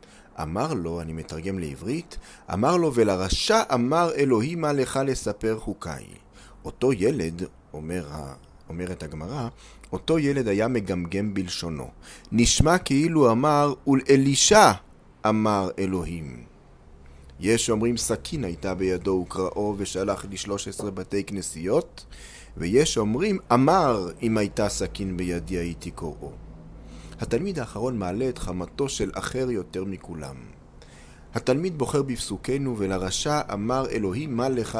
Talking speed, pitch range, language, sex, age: 115 wpm, 90-125 Hz, Hebrew, male, 30-49